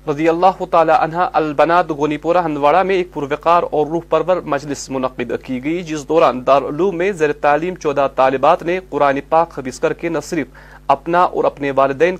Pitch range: 145-180 Hz